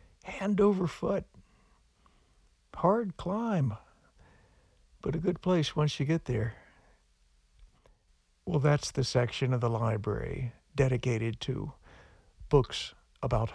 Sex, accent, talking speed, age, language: male, American, 105 wpm, 60-79, English